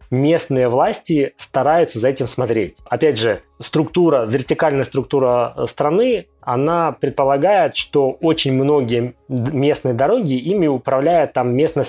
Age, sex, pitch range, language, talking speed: 20-39, male, 120-140 Hz, Russian, 115 wpm